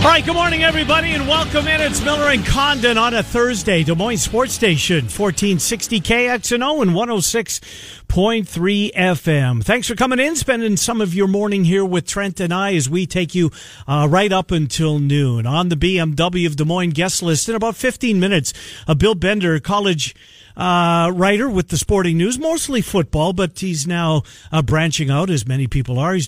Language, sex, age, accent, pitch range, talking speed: English, male, 50-69, American, 150-215 Hz, 185 wpm